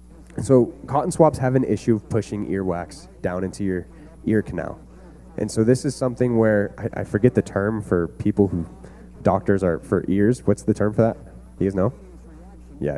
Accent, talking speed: American, 190 wpm